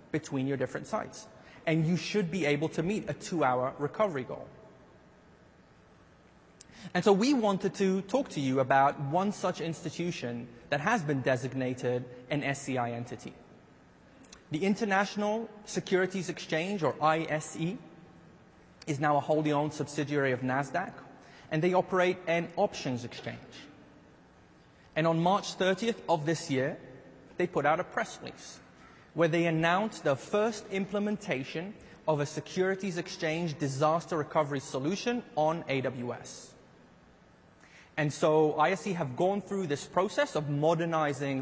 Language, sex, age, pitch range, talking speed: English, male, 30-49, 140-190 Hz, 135 wpm